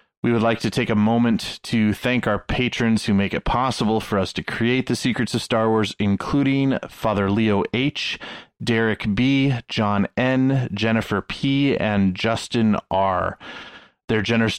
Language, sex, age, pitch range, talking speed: English, male, 30-49, 105-125 Hz, 160 wpm